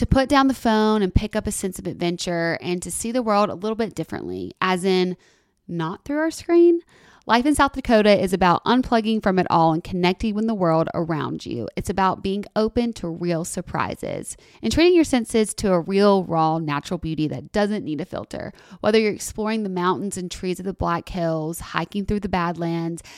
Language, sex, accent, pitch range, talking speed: English, female, American, 165-210 Hz, 210 wpm